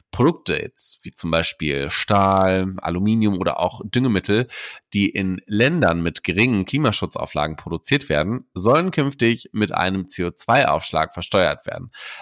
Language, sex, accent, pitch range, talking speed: German, male, German, 90-120 Hz, 125 wpm